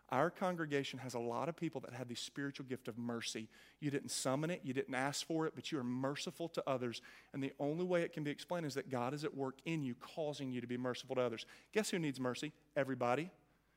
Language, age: English, 40-59